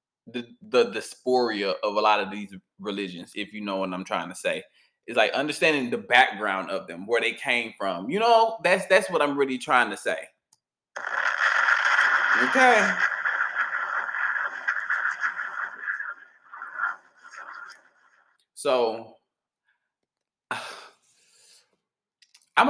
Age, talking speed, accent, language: 20-39, 115 wpm, American, English